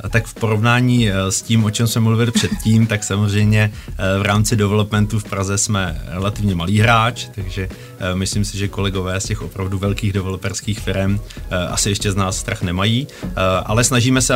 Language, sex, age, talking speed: Czech, male, 30-49, 170 wpm